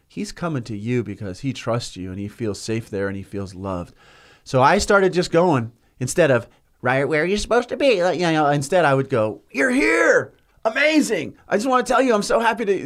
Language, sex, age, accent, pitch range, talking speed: English, male, 30-49, American, 120-185 Hz, 225 wpm